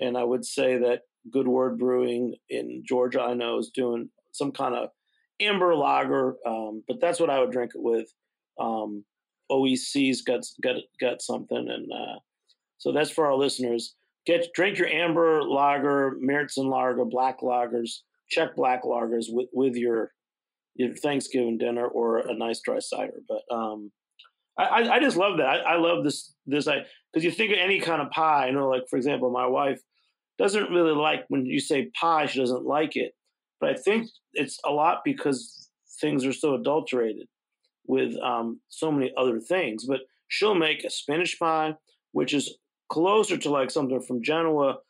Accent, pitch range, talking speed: American, 125-155 Hz, 180 wpm